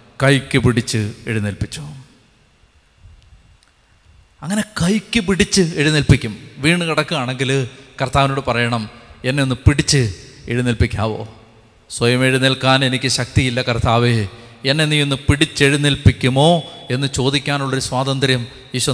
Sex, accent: male, native